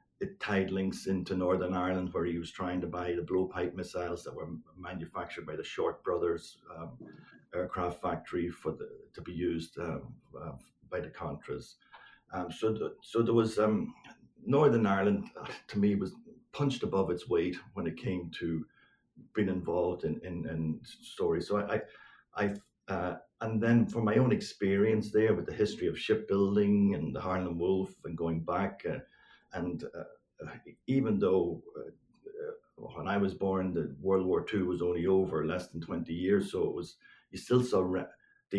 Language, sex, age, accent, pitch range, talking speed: English, male, 60-79, Irish, 90-110 Hz, 180 wpm